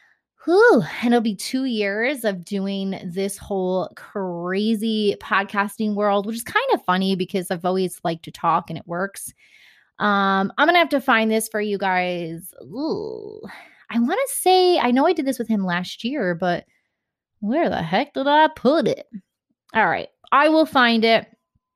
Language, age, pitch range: English, 20-39, 185-230 Hz